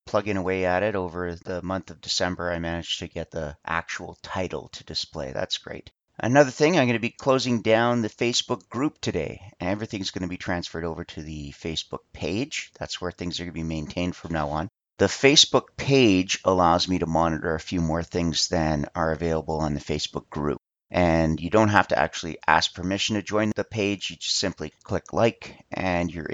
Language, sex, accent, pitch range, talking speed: English, male, American, 85-105 Hz, 205 wpm